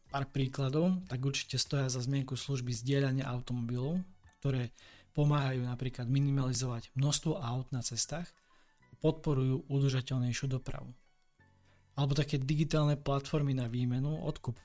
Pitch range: 125-140 Hz